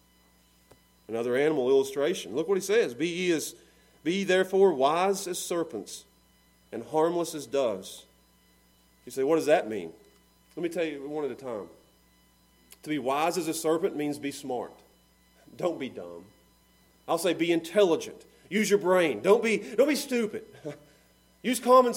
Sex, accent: male, American